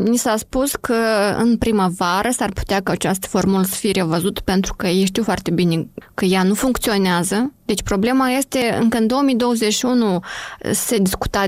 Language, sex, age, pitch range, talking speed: Romanian, female, 20-39, 185-230 Hz, 165 wpm